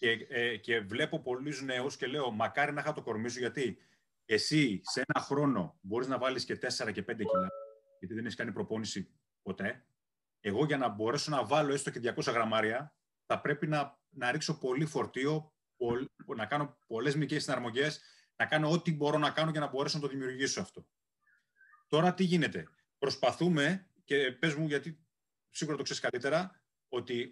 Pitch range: 130-165 Hz